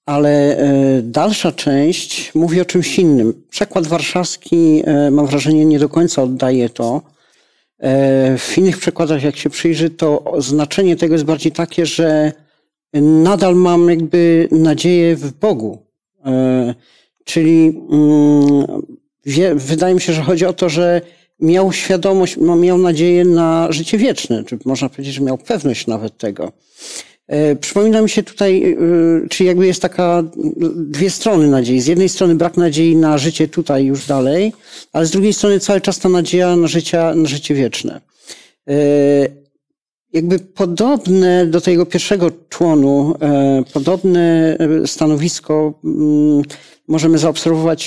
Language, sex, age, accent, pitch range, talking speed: Polish, male, 50-69, native, 145-180 Hz, 130 wpm